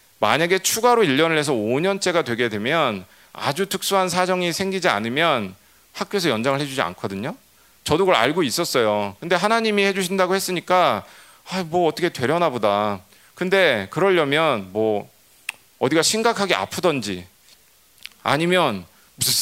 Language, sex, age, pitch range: Korean, male, 40-59, 115-180 Hz